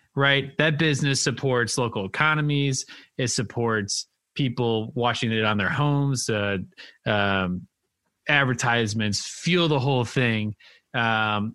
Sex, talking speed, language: male, 115 wpm, English